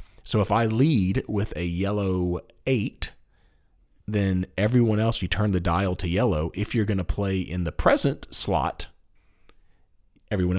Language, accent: English, American